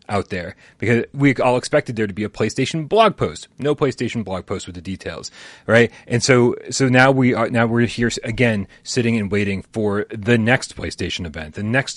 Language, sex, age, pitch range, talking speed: English, male, 30-49, 105-130 Hz, 205 wpm